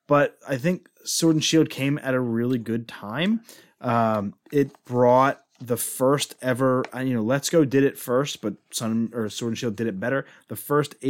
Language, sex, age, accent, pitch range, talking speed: English, male, 30-49, American, 115-150 Hz, 180 wpm